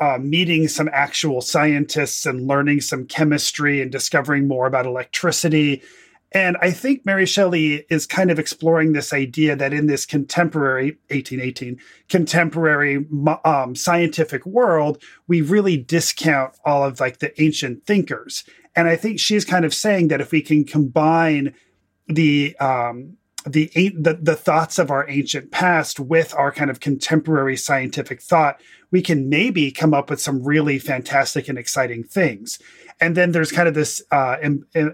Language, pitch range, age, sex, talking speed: English, 135-170 Hz, 30-49, male, 155 wpm